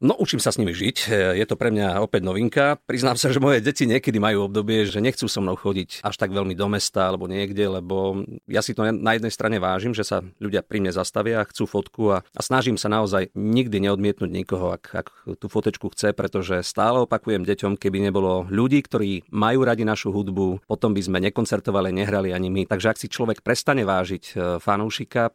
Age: 40-59